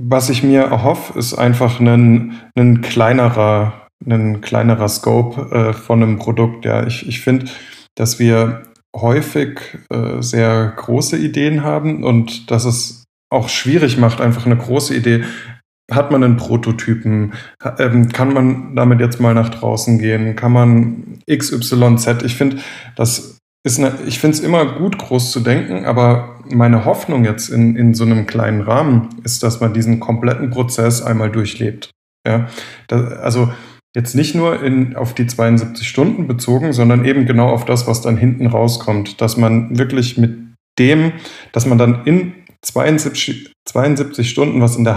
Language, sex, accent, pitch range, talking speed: German, male, German, 115-130 Hz, 155 wpm